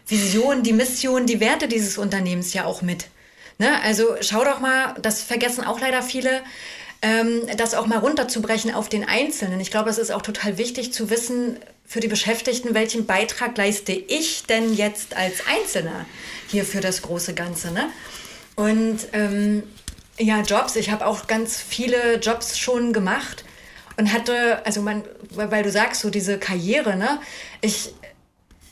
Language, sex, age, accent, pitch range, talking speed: German, female, 30-49, German, 210-245 Hz, 165 wpm